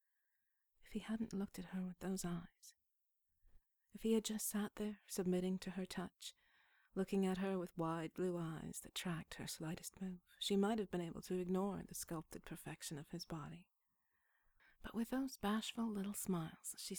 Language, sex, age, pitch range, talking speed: English, female, 40-59, 175-205 Hz, 175 wpm